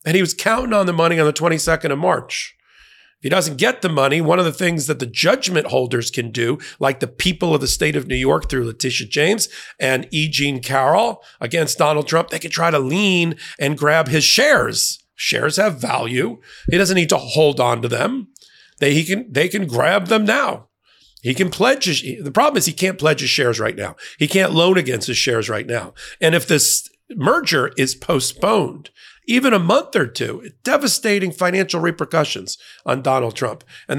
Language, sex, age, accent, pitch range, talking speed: English, male, 40-59, American, 130-185 Hz, 200 wpm